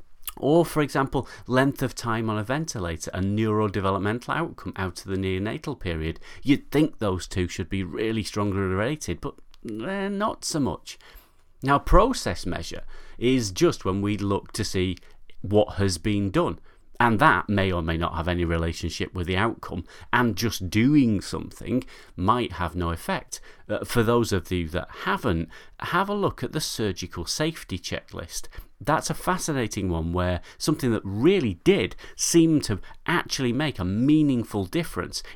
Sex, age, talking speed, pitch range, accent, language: male, 30-49, 165 wpm, 90-130 Hz, British, English